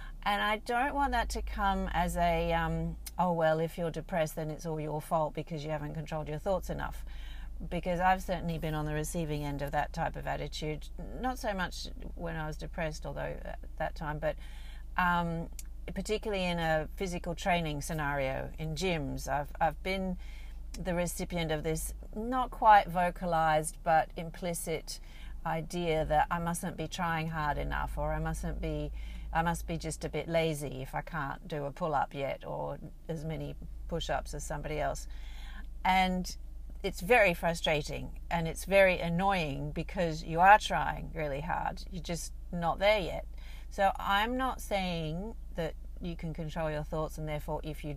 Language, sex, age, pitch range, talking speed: English, female, 50-69, 150-180 Hz, 175 wpm